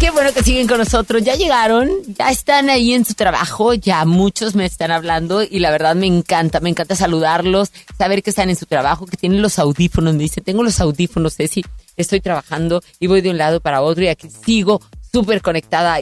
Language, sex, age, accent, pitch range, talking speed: Italian, female, 30-49, Mexican, 160-220 Hz, 220 wpm